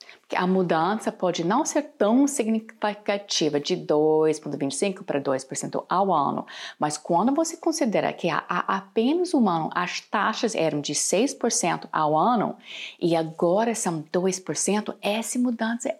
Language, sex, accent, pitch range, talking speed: Portuguese, female, Brazilian, 175-245 Hz, 130 wpm